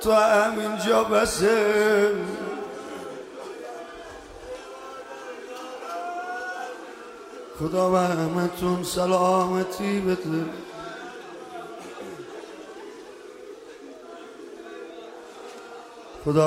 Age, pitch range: 50-69, 180-225 Hz